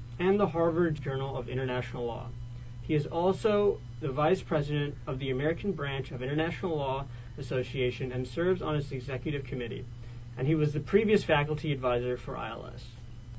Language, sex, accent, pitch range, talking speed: English, male, American, 125-165 Hz, 160 wpm